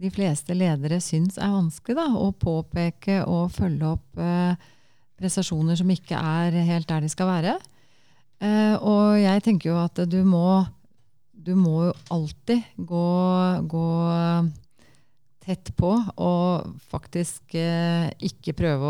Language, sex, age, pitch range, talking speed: English, female, 30-49, 155-200 Hz, 130 wpm